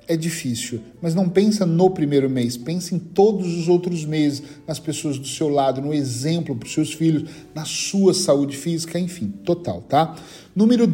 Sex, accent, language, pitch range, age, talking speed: male, Brazilian, Portuguese, 135-185 Hz, 40-59, 180 wpm